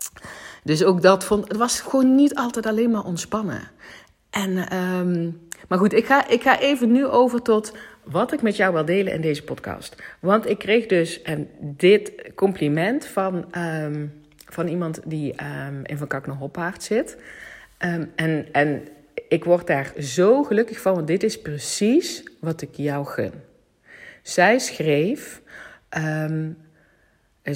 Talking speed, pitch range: 155 wpm, 160-210 Hz